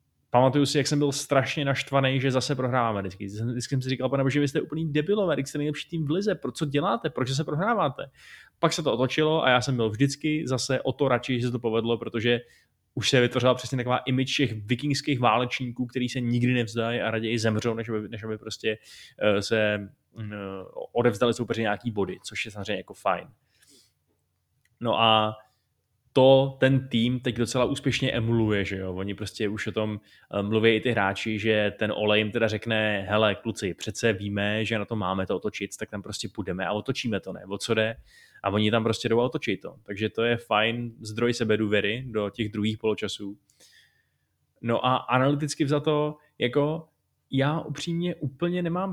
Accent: native